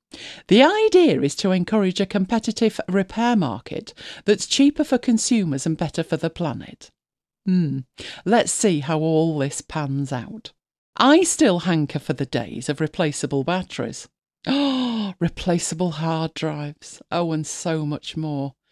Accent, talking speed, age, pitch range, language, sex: British, 140 wpm, 50-69, 155-235 Hz, English, female